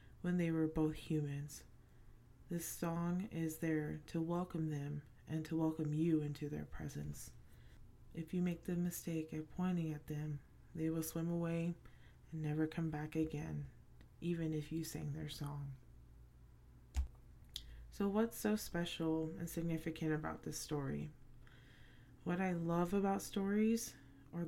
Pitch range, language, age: 145-170 Hz, English, 20-39